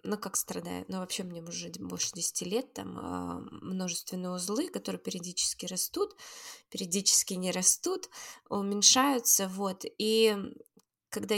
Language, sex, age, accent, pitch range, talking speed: Russian, female, 20-39, native, 185-225 Hz, 125 wpm